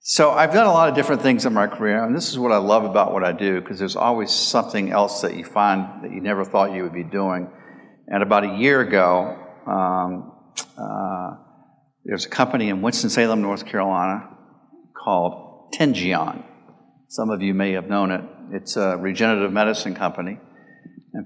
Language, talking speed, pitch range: English, 185 wpm, 95-110 Hz